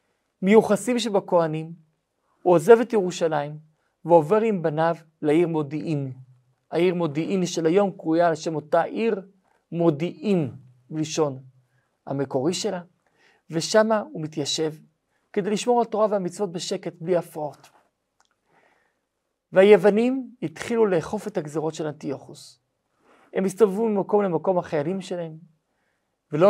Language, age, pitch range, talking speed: Hebrew, 40-59, 160-210 Hz, 110 wpm